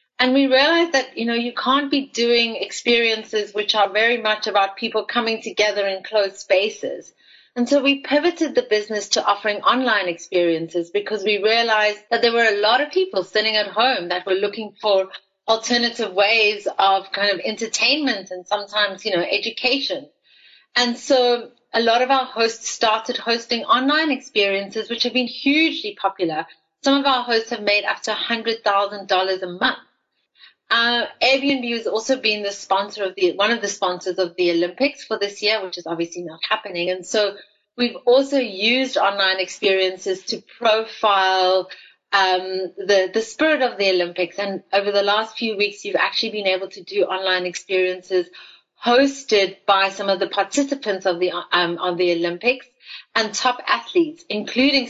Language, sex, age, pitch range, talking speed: English, female, 30-49, 195-250 Hz, 170 wpm